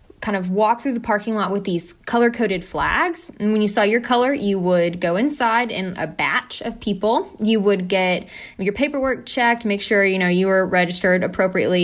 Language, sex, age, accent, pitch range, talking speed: English, female, 10-29, American, 180-240 Hz, 205 wpm